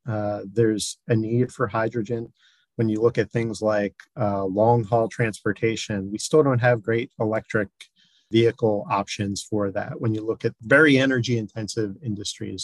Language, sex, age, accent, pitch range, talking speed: English, male, 40-59, American, 105-125 Hz, 160 wpm